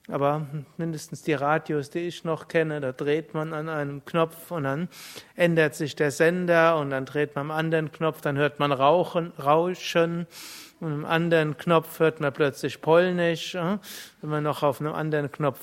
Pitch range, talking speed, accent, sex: 140-170 Hz, 180 wpm, German, male